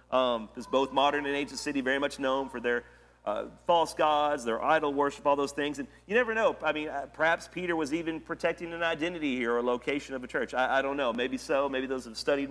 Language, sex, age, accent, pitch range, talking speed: English, male, 40-59, American, 125-145 Hz, 250 wpm